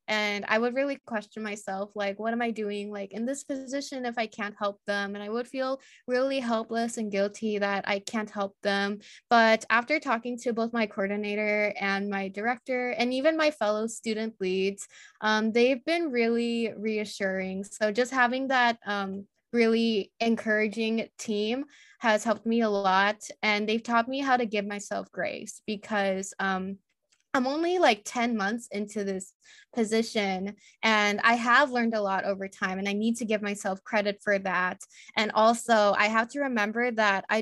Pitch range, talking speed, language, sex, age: 200-235 Hz, 180 wpm, English, female, 10-29